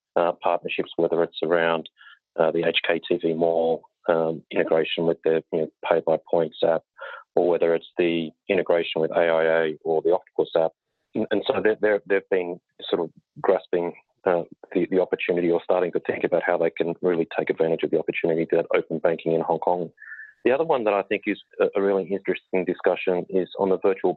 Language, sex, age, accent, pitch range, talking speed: English, male, 30-49, Australian, 85-90 Hz, 195 wpm